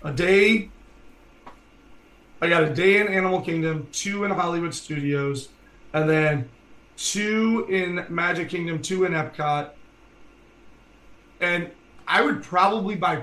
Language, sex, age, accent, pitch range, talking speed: English, male, 30-49, American, 155-185 Hz, 120 wpm